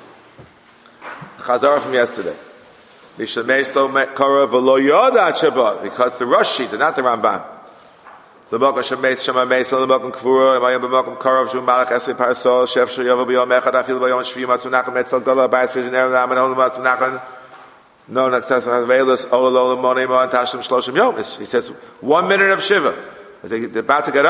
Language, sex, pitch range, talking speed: English, male, 125-135 Hz, 45 wpm